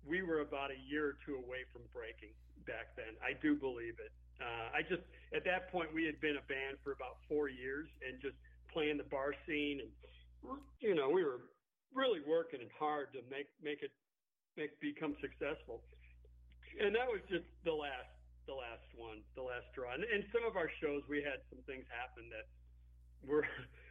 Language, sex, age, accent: English, male, 50-69, American